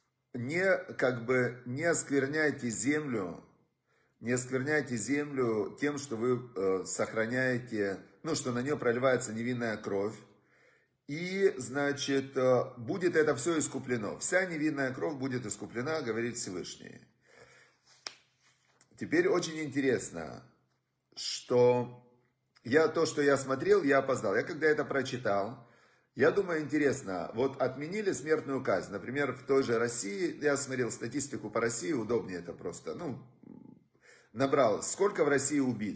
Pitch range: 120-150 Hz